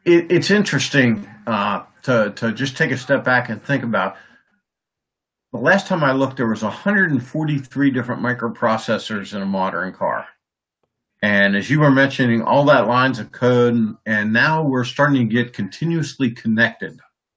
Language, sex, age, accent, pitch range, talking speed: English, male, 50-69, American, 115-145 Hz, 160 wpm